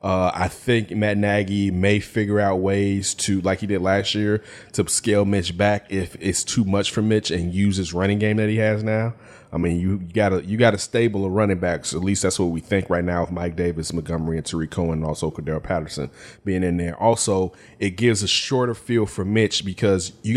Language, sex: English, male